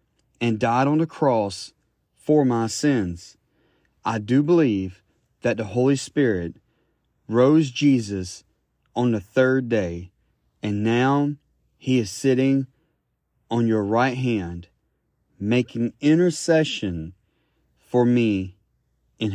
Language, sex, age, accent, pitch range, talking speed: English, male, 30-49, American, 105-145 Hz, 110 wpm